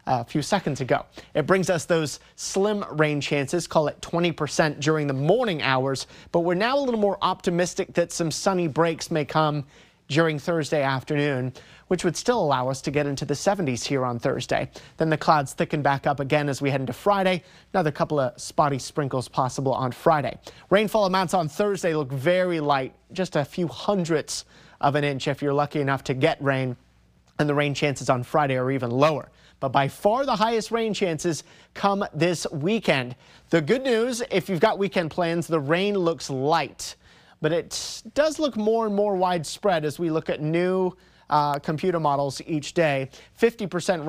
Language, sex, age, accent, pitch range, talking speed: English, male, 30-49, American, 145-180 Hz, 190 wpm